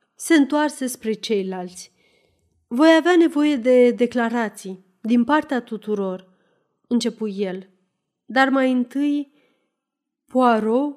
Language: Romanian